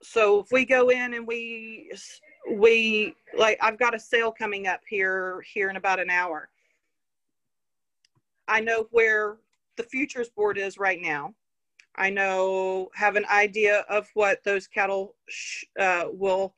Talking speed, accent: 150 wpm, American